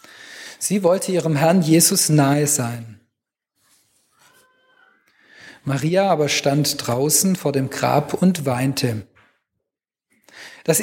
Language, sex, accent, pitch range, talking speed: German, male, German, 150-210 Hz, 95 wpm